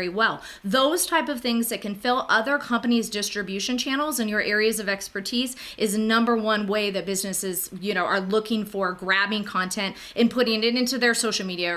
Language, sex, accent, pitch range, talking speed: English, female, American, 195-250 Hz, 190 wpm